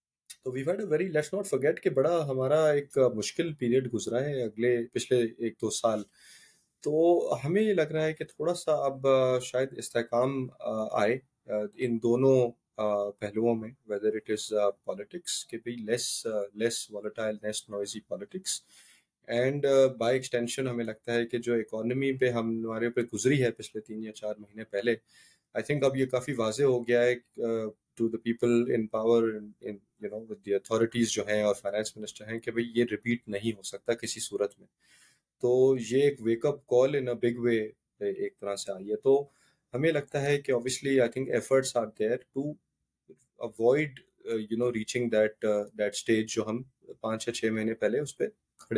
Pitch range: 110-130 Hz